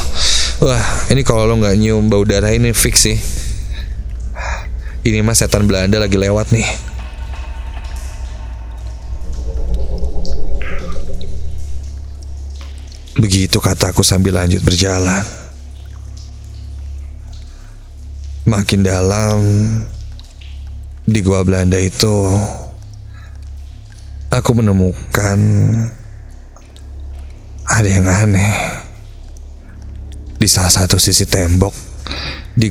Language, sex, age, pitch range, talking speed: Indonesian, male, 30-49, 70-100 Hz, 70 wpm